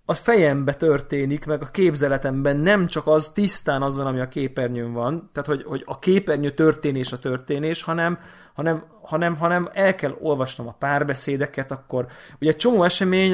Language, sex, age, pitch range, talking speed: Hungarian, male, 20-39, 140-175 Hz, 170 wpm